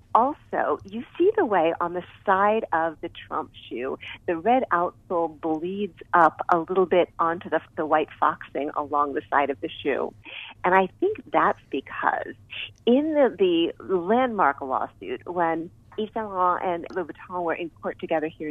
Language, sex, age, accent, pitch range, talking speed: English, female, 40-59, American, 165-235 Hz, 170 wpm